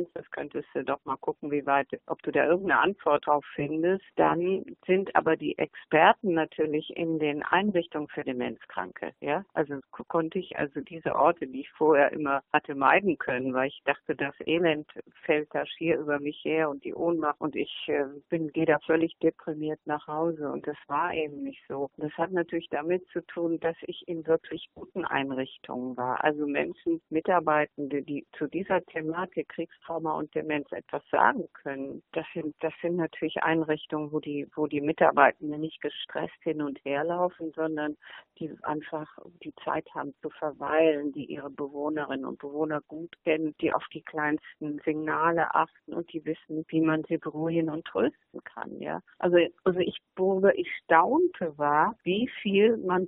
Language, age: German, 50-69